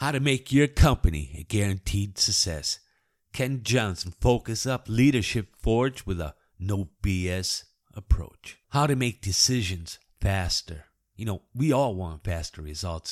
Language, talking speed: English, 140 wpm